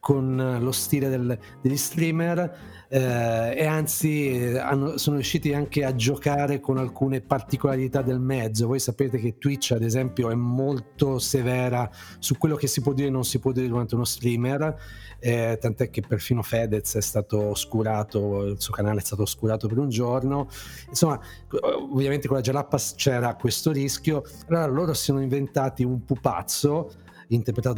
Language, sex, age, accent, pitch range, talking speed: Italian, male, 40-59, native, 115-140 Hz, 160 wpm